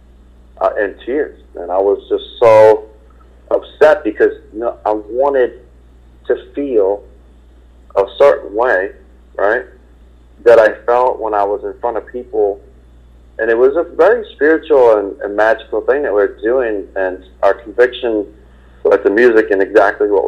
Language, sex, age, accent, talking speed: English, male, 40-59, American, 150 wpm